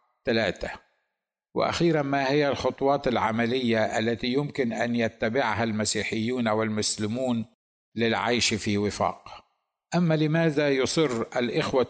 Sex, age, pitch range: male, 60-79, 115-135 Hz